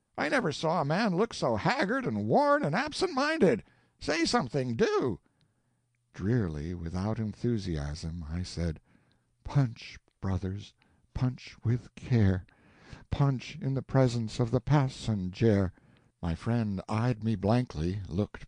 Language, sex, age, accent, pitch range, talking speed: English, male, 60-79, American, 105-155 Hz, 125 wpm